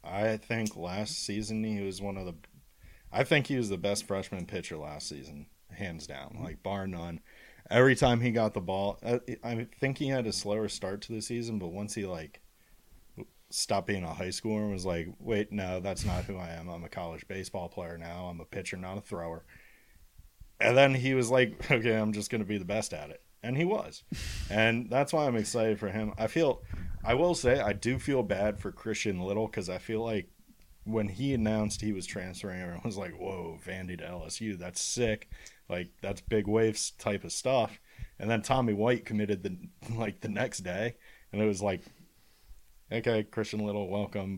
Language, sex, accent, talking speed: English, male, American, 205 wpm